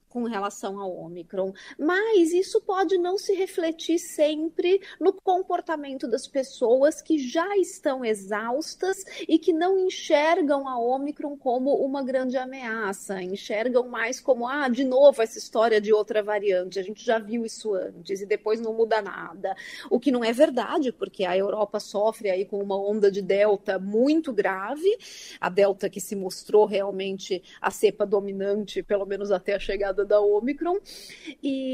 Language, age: Portuguese, 30-49